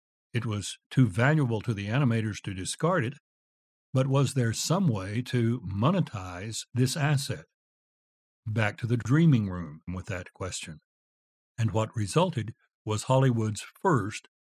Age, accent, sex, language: 60-79, American, male, English